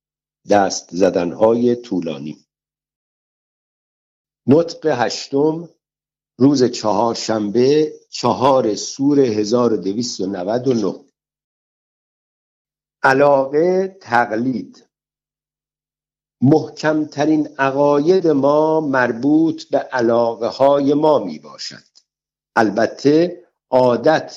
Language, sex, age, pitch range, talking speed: Persian, male, 60-79, 115-155 Hz, 60 wpm